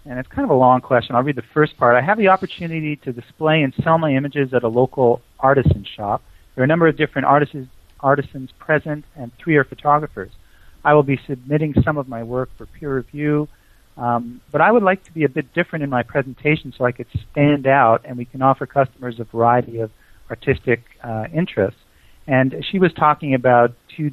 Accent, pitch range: American, 120-150 Hz